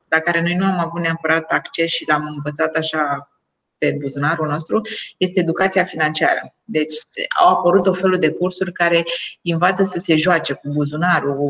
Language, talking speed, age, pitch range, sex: Romanian, 165 wpm, 20-39, 160-205 Hz, female